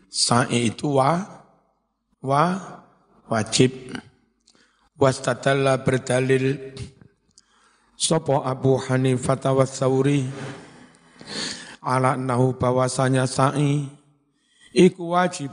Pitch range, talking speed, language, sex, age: 130-145 Hz, 65 wpm, Indonesian, male, 60-79